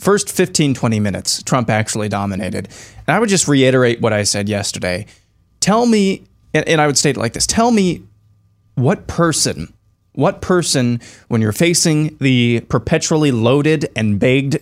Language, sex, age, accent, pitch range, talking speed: English, male, 20-39, American, 115-155 Hz, 155 wpm